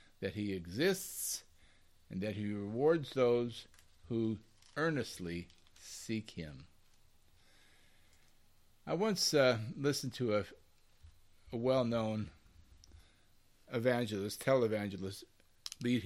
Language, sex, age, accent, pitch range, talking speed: English, male, 50-69, American, 90-135 Hz, 85 wpm